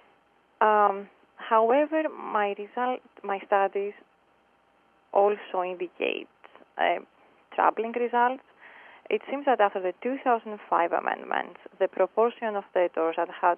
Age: 20-39